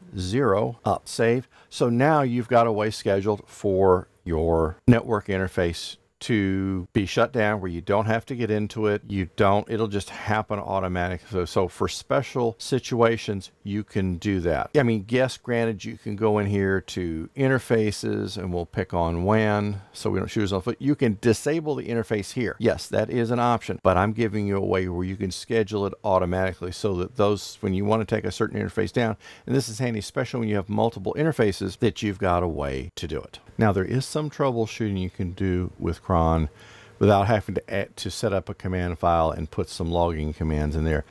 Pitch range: 90-115 Hz